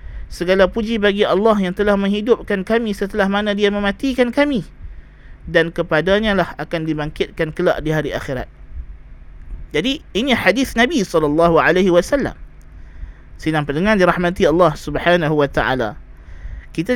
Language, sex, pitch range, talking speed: Malay, male, 160-220 Hz, 125 wpm